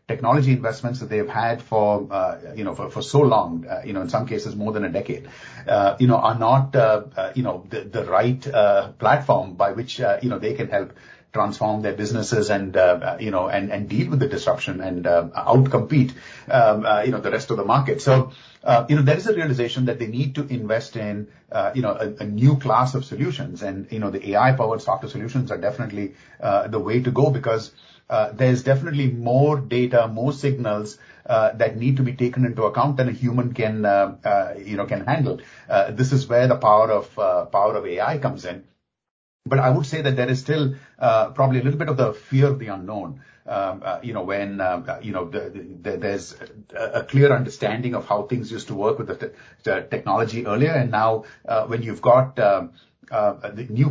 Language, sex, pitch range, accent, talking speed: English, male, 105-135 Hz, Indian, 205 wpm